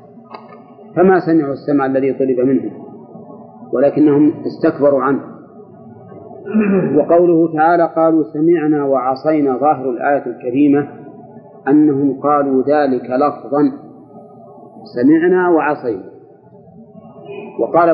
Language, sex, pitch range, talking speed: Arabic, male, 135-170 Hz, 80 wpm